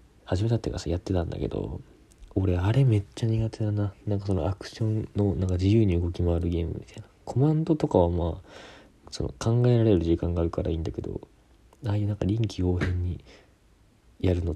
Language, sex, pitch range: Japanese, male, 85-105 Hz